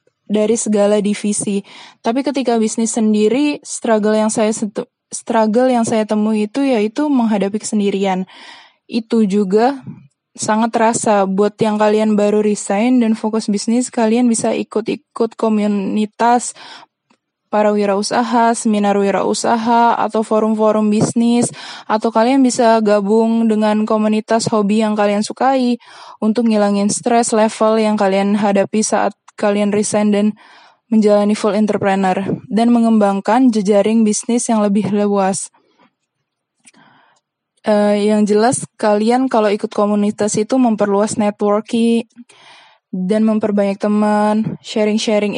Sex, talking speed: female, 115 wpm